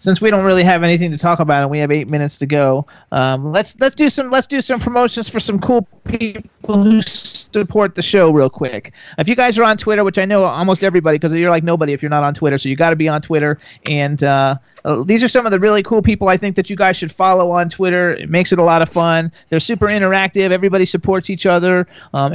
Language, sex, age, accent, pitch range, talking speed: English, male, 40-59, American, 170-220 Hz, 260 wpm